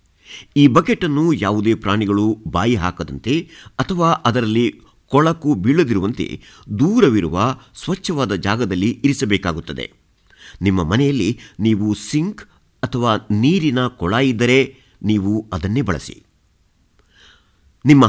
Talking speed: 85 wpm